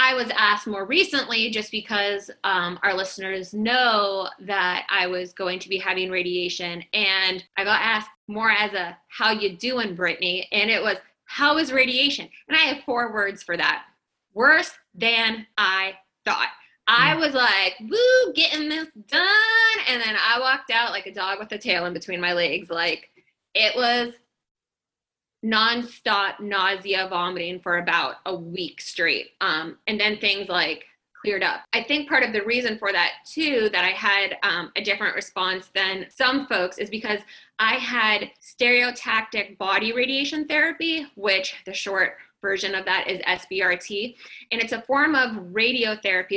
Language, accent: English, American